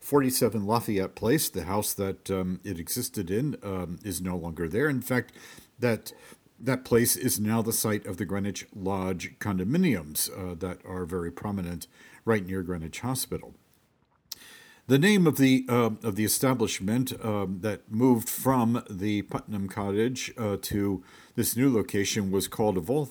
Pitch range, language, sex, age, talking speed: 95-130 Hz, English, male, 50-69, 160 wpm